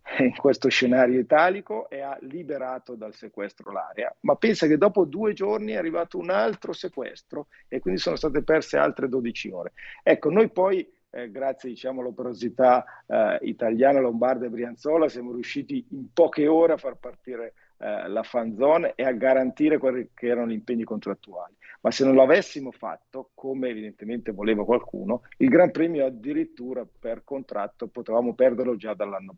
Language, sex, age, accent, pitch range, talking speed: Italian, male, 50-69, native, 115-145 Hz, 165 wpm